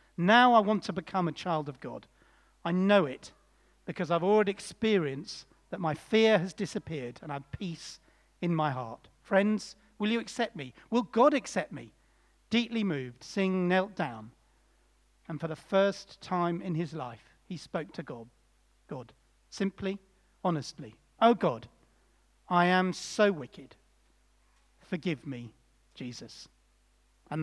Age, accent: 40-59, British